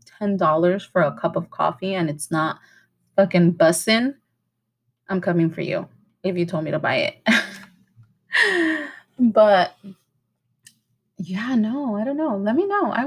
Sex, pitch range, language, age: female, 170-215 Hz, English, 30-49